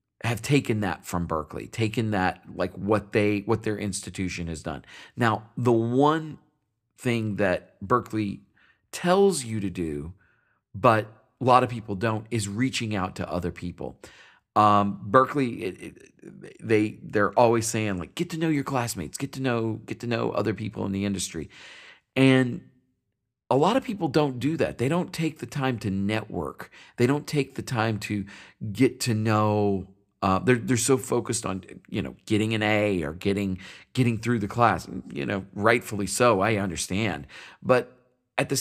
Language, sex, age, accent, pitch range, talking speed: English, male, 40-59, American, 100-130 Hz, 175 wpm